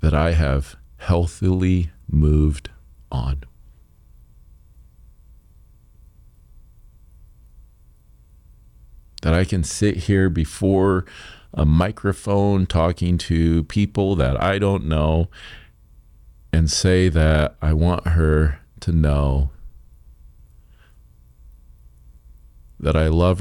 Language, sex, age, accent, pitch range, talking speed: English, male, 50-69, American, 65-85 Hz, 80 wpm